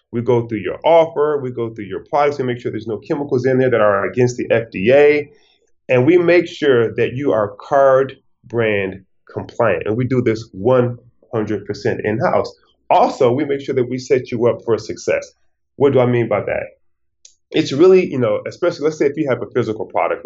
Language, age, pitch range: English, 30-49, 115-150 Hz